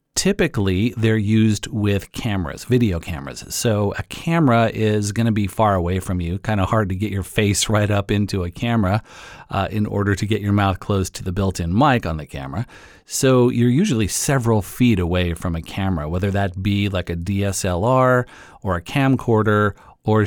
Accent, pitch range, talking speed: American, 95-115 Hz, 190 wpm